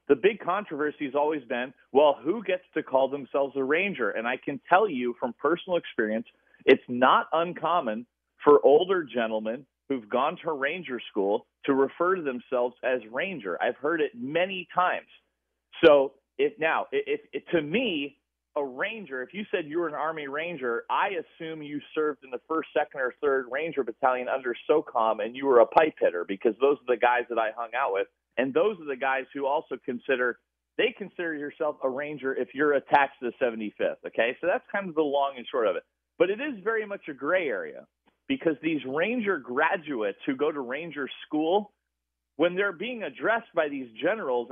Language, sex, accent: English, male, American